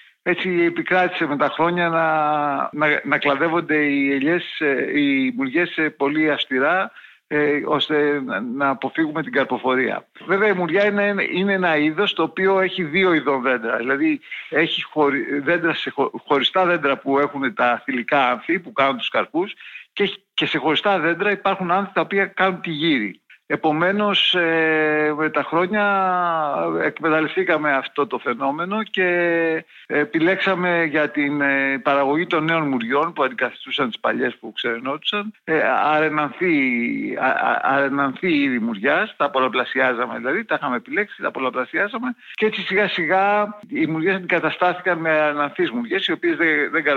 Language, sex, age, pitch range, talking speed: Greek, male, 60-79, 145-195 Hz, 140 wpm